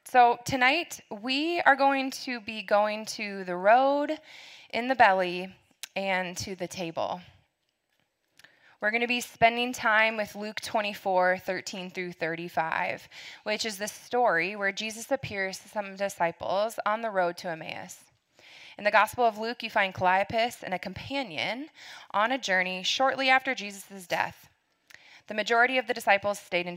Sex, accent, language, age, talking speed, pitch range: female, American, English, 20-39, 160 wpm, 185-235 Hz